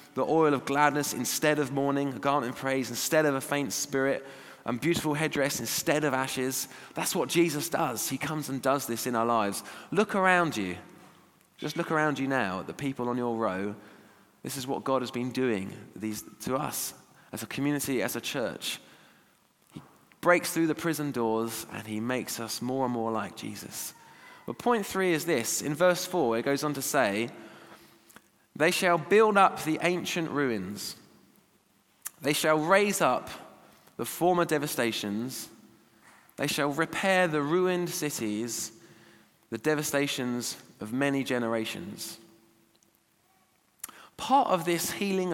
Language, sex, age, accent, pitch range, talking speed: English, male, 20-39, British, 120-160 Hz, 160 wpm